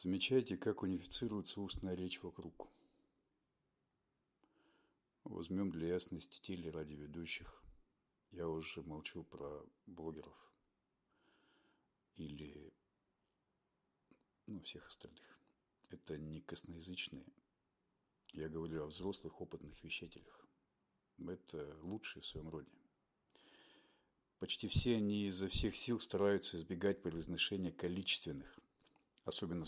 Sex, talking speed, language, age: male, 90 wpm, Russian, 50-69